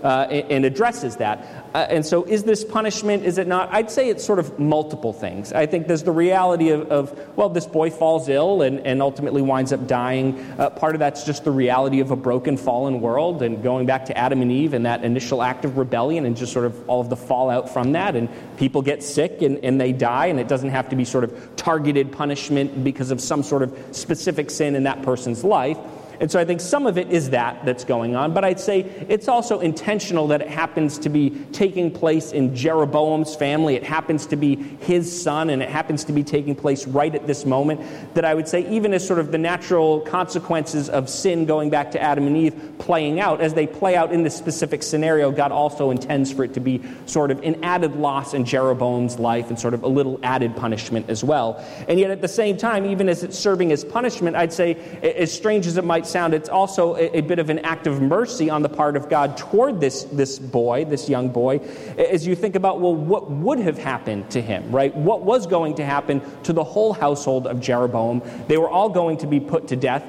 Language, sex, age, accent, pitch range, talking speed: English, male, 30-49, American, 135-170 Hz, 235 wpm